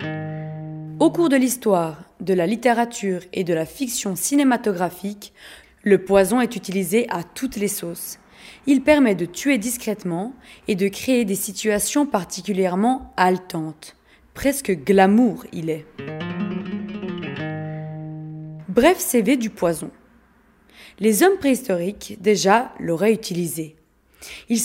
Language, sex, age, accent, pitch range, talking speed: French, female, 20-39, French, 175-245 Hz, 115 wpm